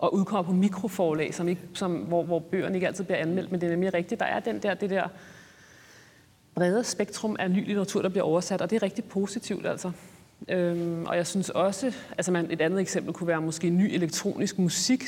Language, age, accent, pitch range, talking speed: Danish, 30-49, native, 160-190 Hz, 215 wpm